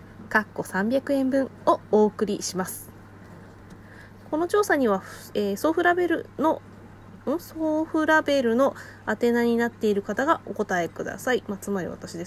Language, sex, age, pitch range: Japanese, female, 20-39, 170-260 Hz